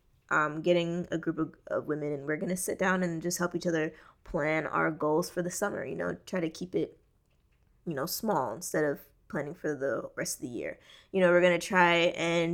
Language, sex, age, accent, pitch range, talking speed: English, female, 20-39, American, 160-185 Hz, 235 wpm